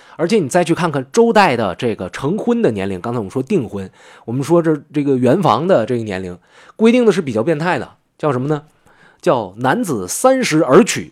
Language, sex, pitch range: Chinese, male, 105-170 Hz